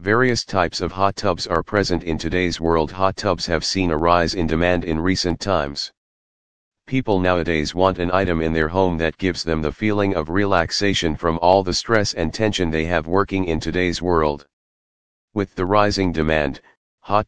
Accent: American